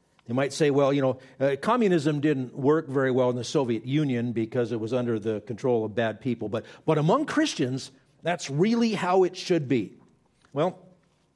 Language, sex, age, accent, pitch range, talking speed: English, male, 50-69, American, 130-160 Hz, 190 wpm